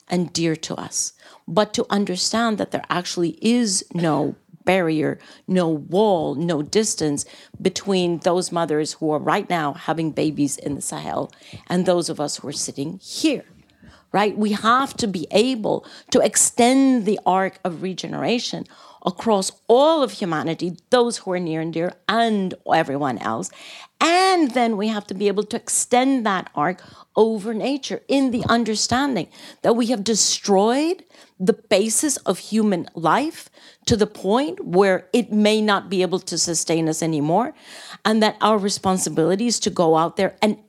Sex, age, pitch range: female, 50-69, 175-230 Hz